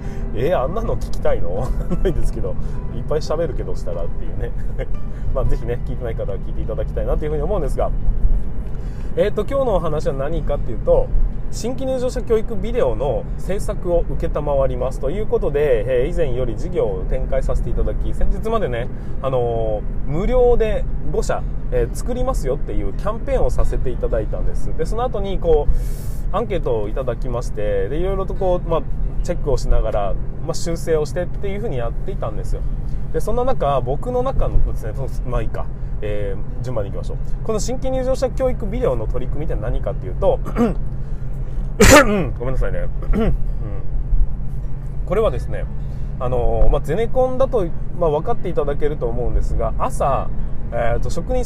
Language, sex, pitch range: Japanese, male, 125-190 Hz